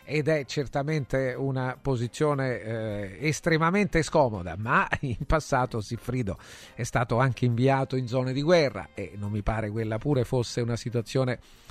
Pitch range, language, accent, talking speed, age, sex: 120-145 Hz, Italian, native, 150 wpm, 40-59, male